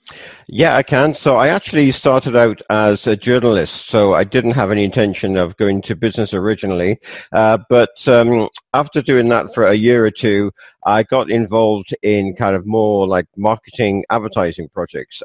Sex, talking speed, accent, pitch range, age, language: male, 175 wpm, British, 100-115 Hz, 50-69, English